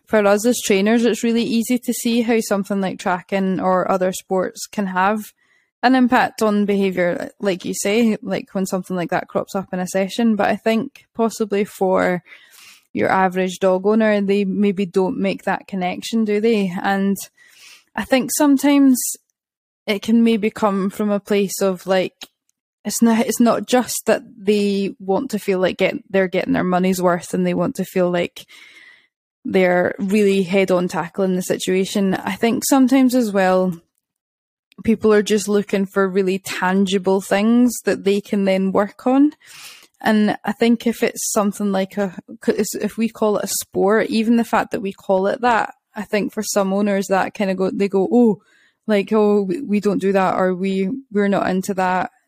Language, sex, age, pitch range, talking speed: English, female, 10-29, 190-230 Hz, 180 wpm